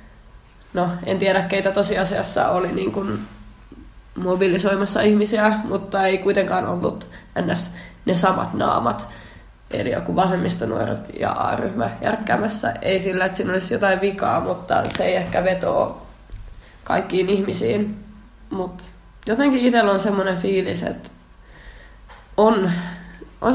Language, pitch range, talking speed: Finnish, 180-205 Hz, 120 wpm